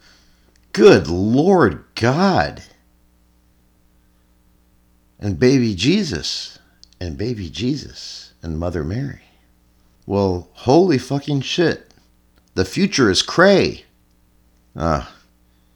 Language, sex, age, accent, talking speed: English, male, 50-69, American, 80 wpm